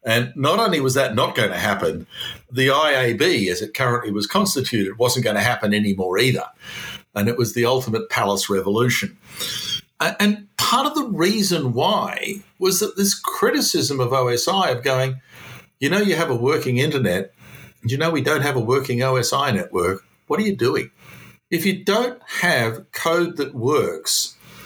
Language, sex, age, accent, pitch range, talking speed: English, male, 50-69, Australian, 115-175 Hz, 175 wpm